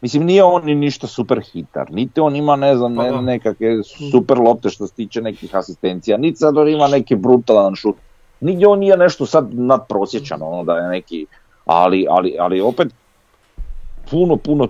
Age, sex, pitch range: 40-59, male, 95-135 Hz